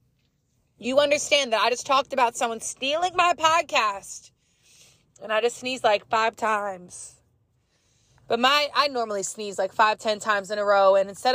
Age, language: 20-39, English